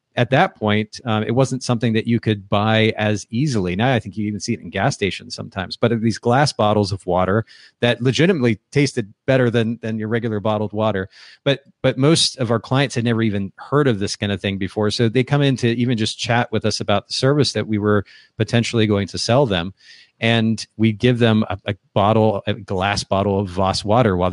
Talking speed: 225 wpm